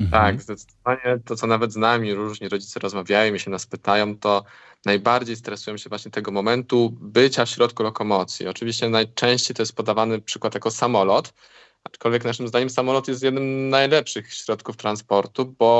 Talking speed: 165 wpm